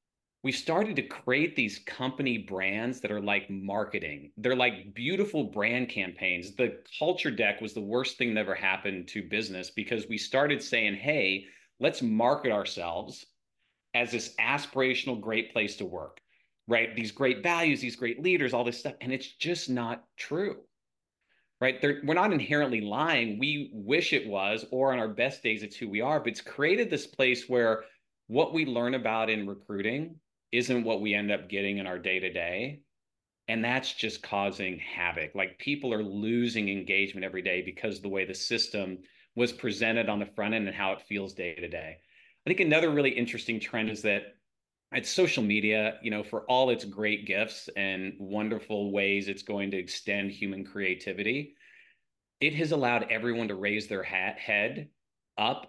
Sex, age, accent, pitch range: male, 30-49, American, 100-125 Hz